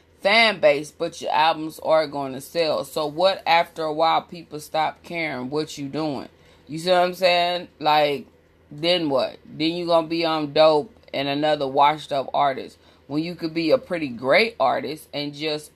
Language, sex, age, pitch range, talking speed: English, female, 30-49, 140-170 Hz, 190 wpm